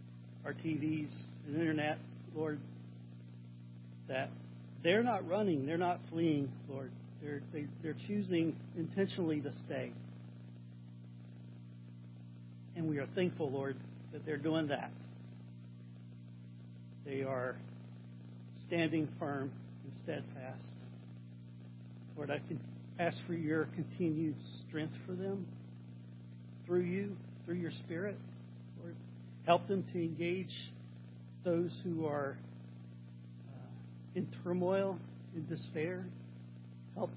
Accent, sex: American, male